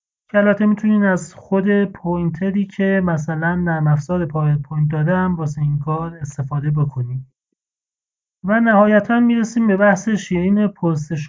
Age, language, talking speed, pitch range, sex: 30-49, Persian, 120 wpm, 155-205 Hz, male